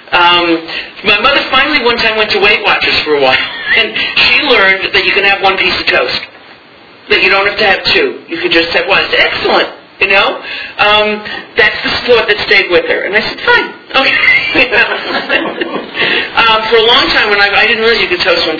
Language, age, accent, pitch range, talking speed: English, 40-59, American, 170-255 Hz, 225 wpm